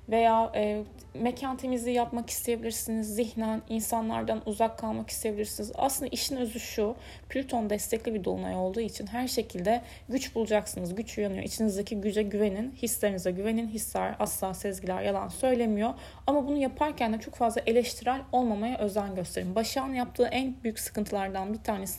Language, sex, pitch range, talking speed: Turkish, female, 200-255 Hz, 145 wpm